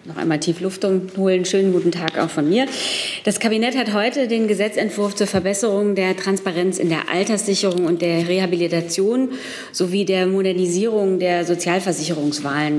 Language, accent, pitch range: German, German, 170-195 Hz